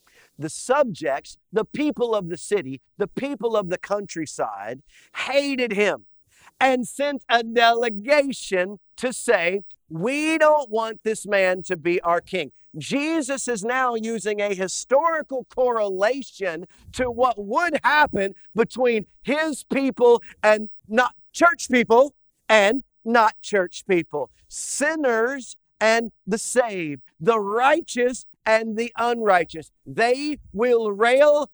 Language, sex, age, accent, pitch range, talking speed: English, male, 50-69, American, 190-255 Hz, 120 wpm